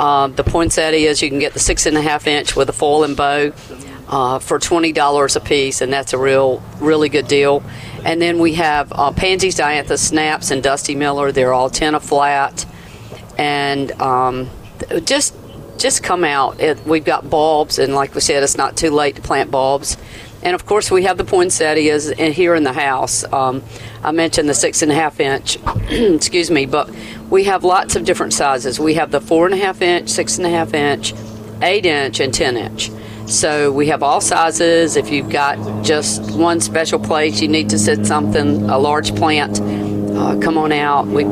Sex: female